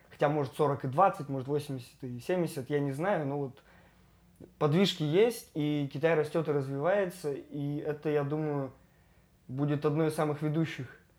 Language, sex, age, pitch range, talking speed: Russian, male, 20-39, 140-165 Hz, 160 wpm